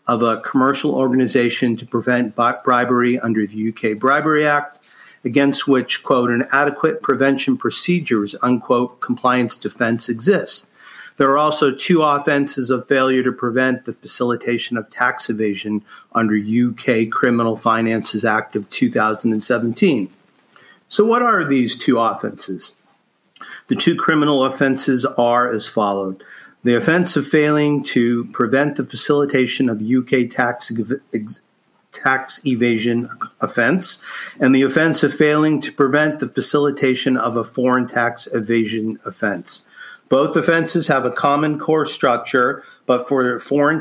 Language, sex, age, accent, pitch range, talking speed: English, male, 50-69, American, 120-145 Hz, 130 wpm